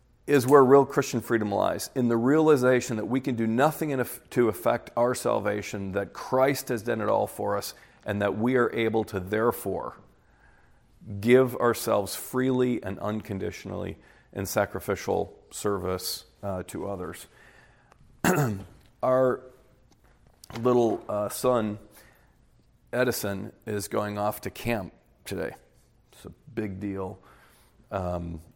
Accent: American